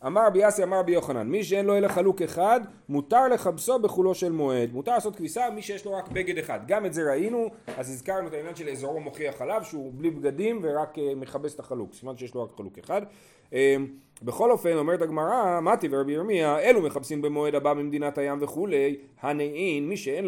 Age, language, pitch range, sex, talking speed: 30-49, Hebrew, 145-205 Hz, male, 200 wpm